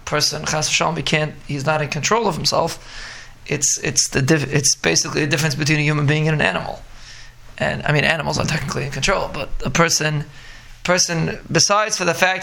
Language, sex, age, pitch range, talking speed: English, male, 20-39, 145-170 Hz, 200 wpm